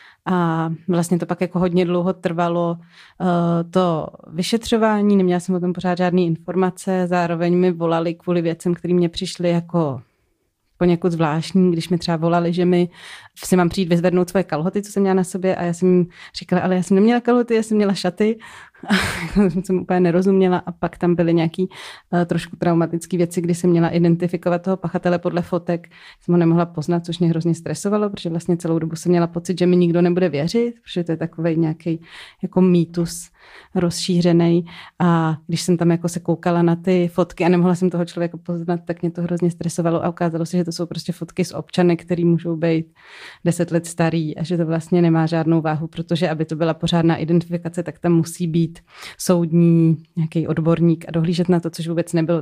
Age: 30-49